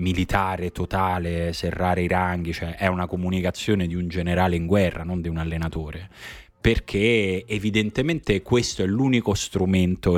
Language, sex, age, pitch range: Italian, male, 20-39, 90-110 Hz